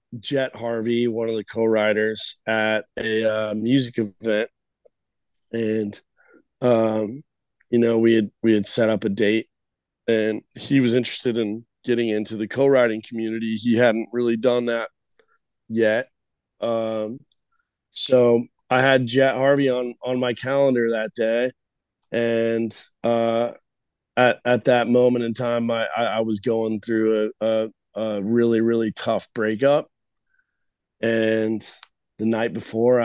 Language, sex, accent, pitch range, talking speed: English, male, American, 110-125 Hz, 140 wpm